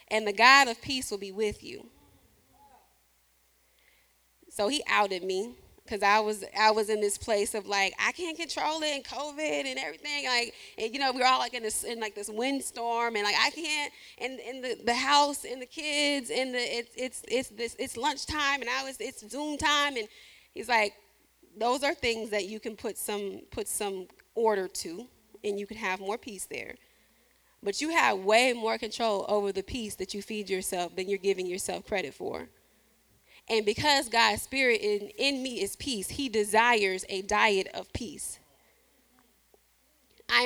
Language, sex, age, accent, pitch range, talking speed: English, female, 20-39, American, 200-255 Hz, 190 wpm